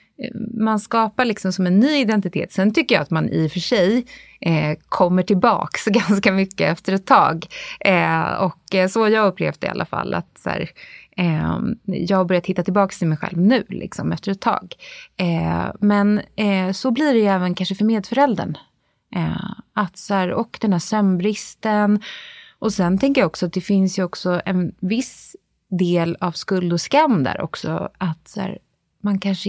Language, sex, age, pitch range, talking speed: Swedish, female, 20-39, 175-215 Hz, 190 wpm